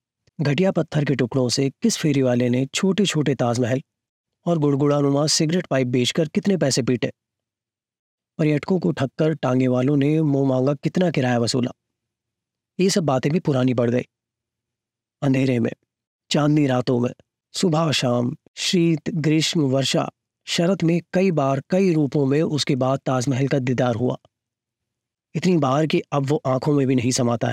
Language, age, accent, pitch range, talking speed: Hindi, 30-49, native, 120-155 Hz, 155 wpm